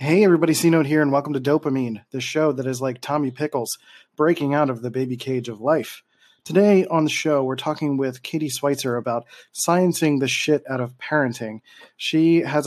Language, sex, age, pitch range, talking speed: English, male, 30-49, 125-150 Hz, 195 wpm